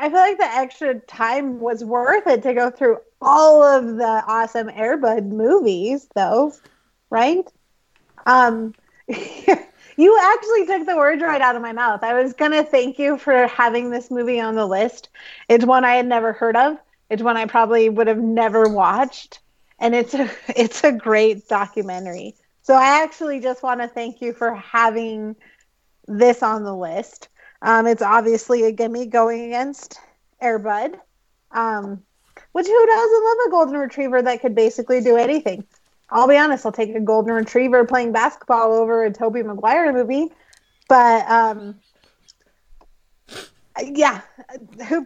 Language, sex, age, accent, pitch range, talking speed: English, female, 30-49, American, 225-270 Hz, 160 wpm